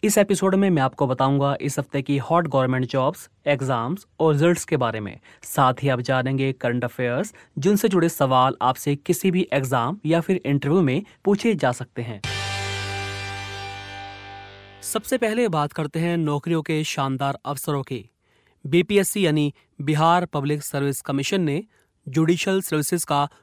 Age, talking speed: 30-49, 105 wpm